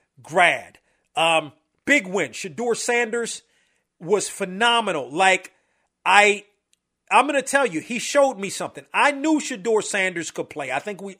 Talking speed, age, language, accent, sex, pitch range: 145 wpm, 40-59, English, American, male, 170-205 Hz